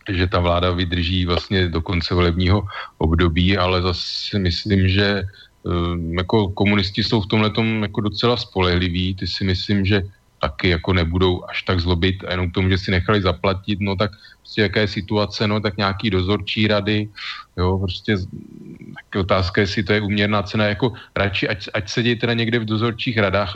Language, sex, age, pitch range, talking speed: Slovak, male, 30-49, 90-110 Hz, 170 wpm